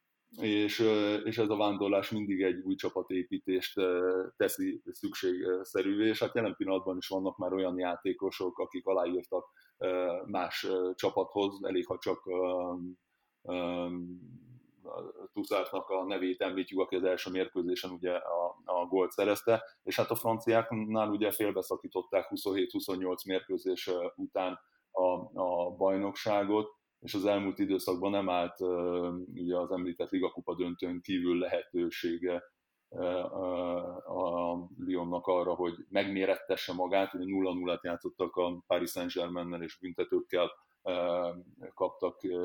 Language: Hungarian